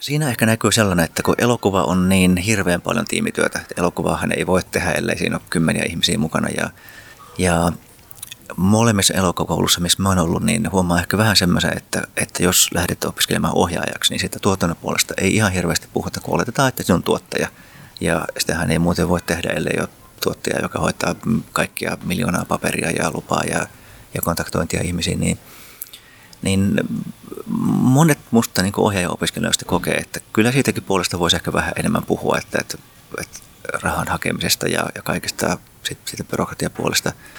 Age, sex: 30-49, male